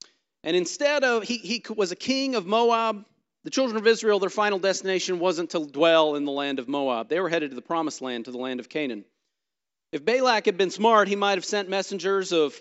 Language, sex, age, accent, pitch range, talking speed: English, male, 40-59, American, 155-205 Hz, 230 wpm